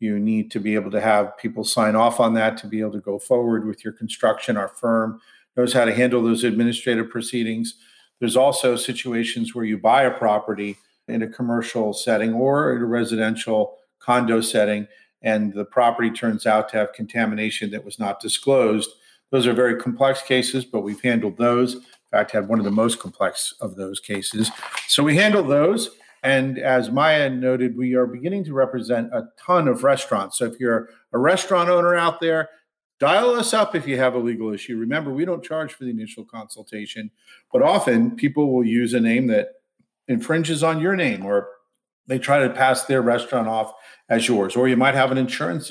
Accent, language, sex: American, English, male